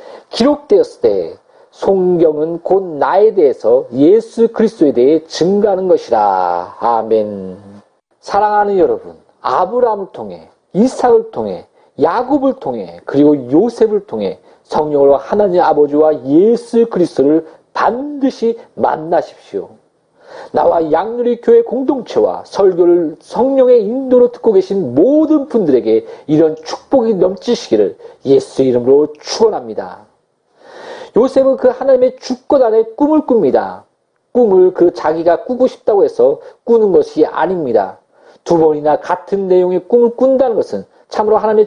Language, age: Korean, 40-59